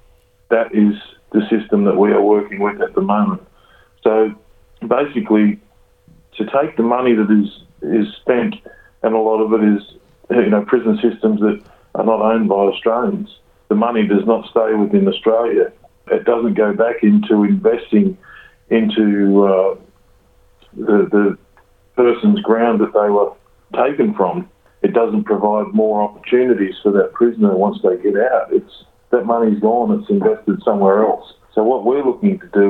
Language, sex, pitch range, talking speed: English, male, 105-115 Hz, 160 wpm